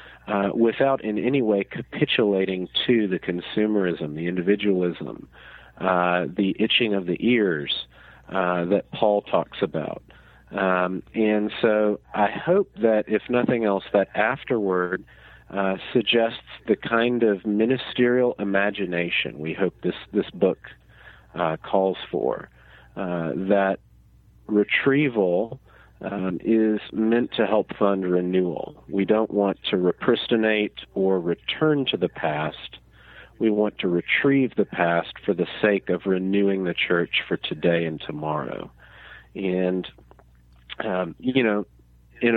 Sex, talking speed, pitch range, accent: male, 125 wpm, 90-115 Hz, American